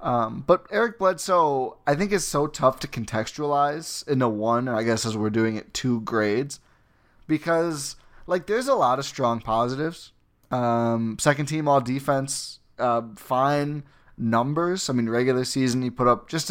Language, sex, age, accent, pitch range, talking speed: English, male, 20-39, American, 115-145 Hz, 165 wpm